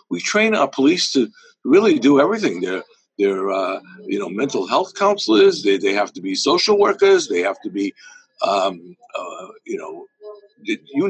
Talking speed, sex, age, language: 175 wpm, male, 60-79, English